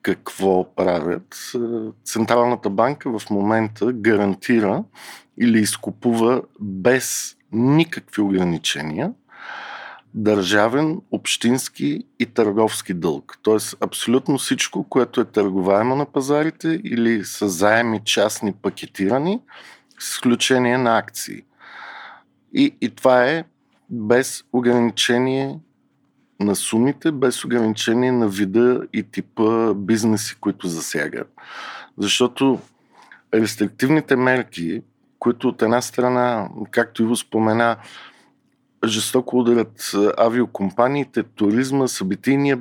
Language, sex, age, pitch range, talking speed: Bulgarian, male, 50-69, 105-125 Hz, 95 wpm